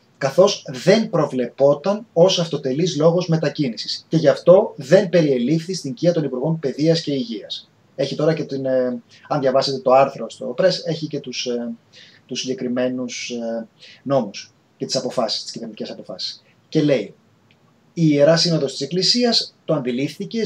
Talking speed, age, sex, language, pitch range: 155 wpm, 30-49, male, Greek, 135-170 Hz